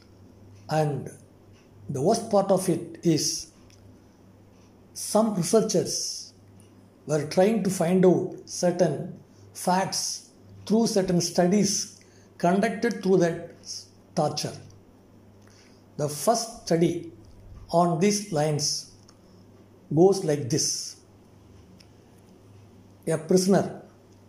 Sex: male